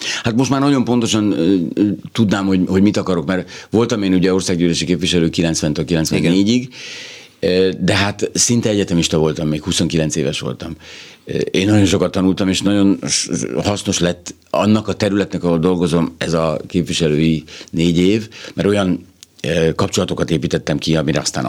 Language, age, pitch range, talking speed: Hungarian, 60-79, 80-100 Hz, 145 wpm